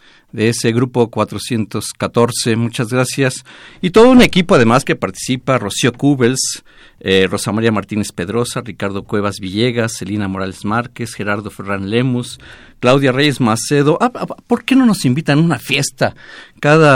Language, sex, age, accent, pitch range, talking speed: Spanish, male, 50-69, Mexican, 110-145 Hz, 150 wpm